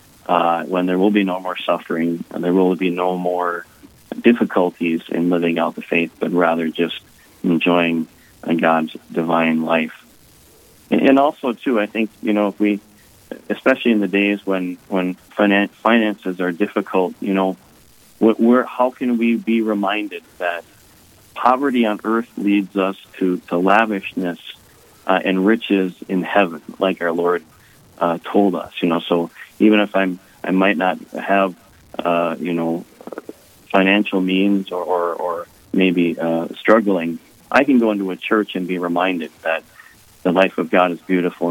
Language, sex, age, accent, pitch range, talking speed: English, male, 30-49, American, 85-105 Hz, 160 wpm